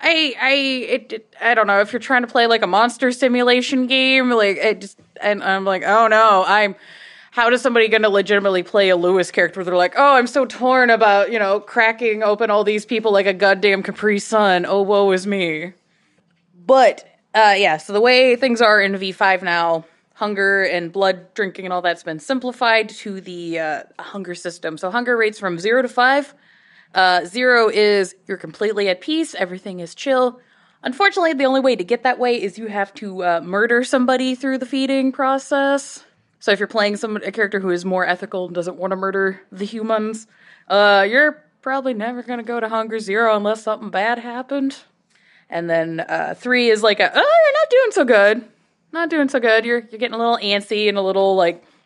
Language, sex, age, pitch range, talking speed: English, female, 20-39, 190-245 Hz, 205 wpm